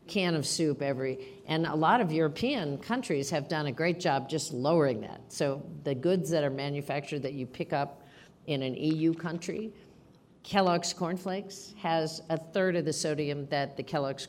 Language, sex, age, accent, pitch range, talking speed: English, female, 50-69, American, 135-170 Hz, 180 wpm